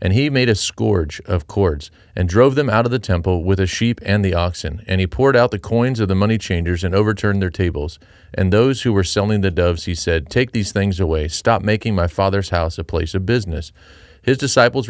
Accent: American